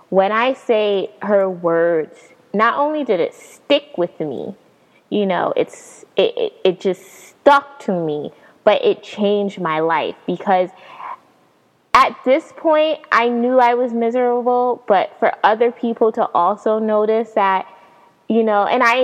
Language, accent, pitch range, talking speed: English, American, 175-225 Hz, 150 wpm